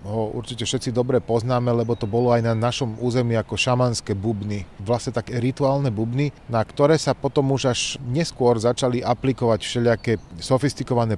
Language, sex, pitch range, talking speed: Slovak, male, 110-130 Hz, 160 wpm